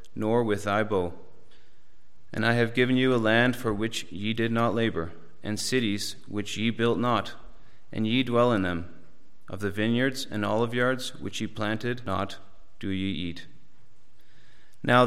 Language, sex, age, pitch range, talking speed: English, male, 30-49, 100-120 Hz, 165 wpm